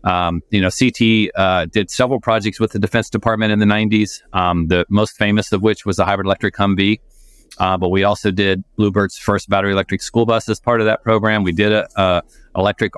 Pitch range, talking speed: 95-105 Hz, 215 wpm